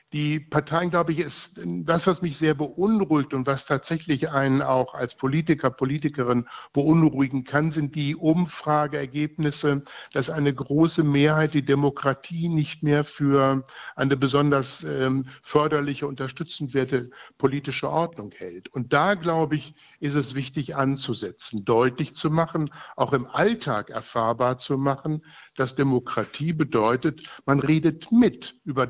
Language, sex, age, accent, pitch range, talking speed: German, male, 60-79, German, 130-155 Hz, 135 wpm